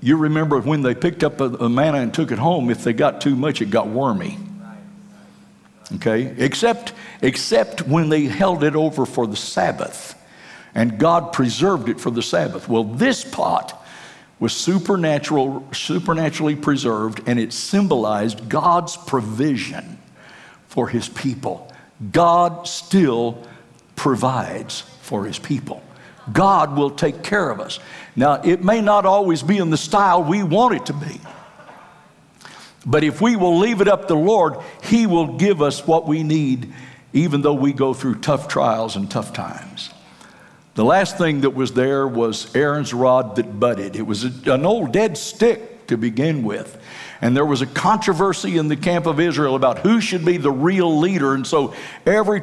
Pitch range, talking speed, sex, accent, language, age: 130-185 Hz, 170 wpm, male, American, English, 60-79